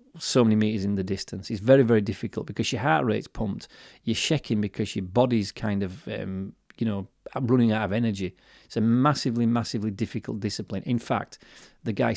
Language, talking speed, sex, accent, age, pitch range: English, 190 wpm, male, British, 30-49, 100-125 Hz